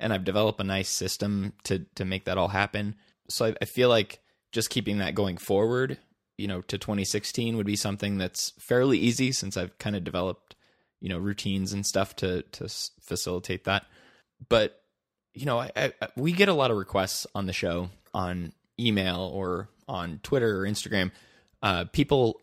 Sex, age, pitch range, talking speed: male, 20-39, 95-110 Hz, 185 wpm